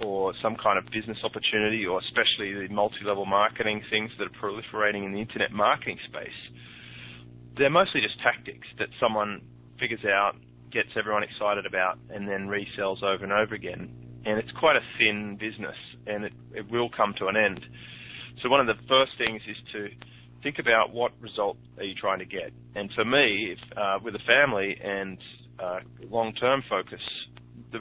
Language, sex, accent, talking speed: English, male, Australian, 175 wpm